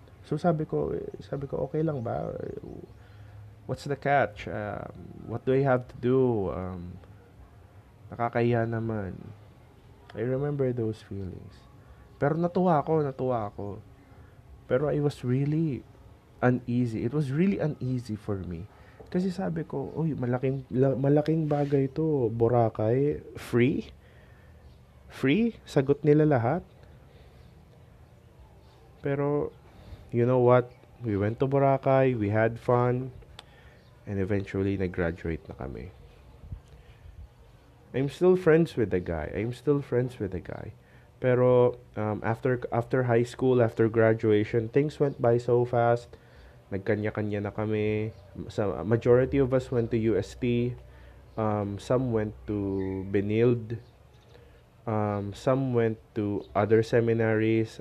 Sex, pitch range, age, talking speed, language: male, 105-130 Hz, 20-39, 120 wpm, Filipino